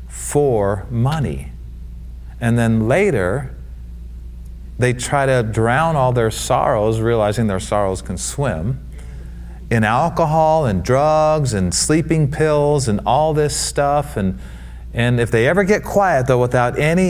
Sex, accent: male, American